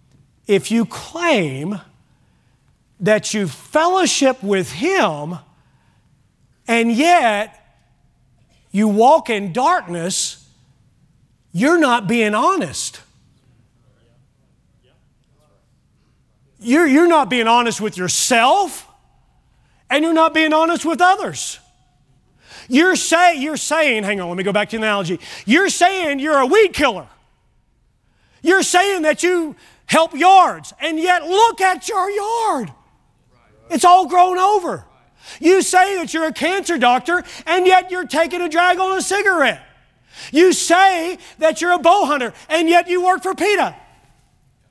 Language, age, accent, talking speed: English, 40-59, American, 130 wpm